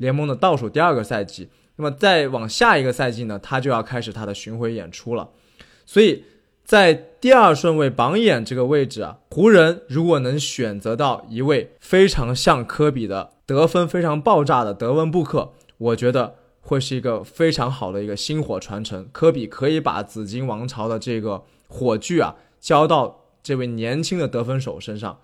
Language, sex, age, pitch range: Chinese, male, 20-39, 115-165 Hz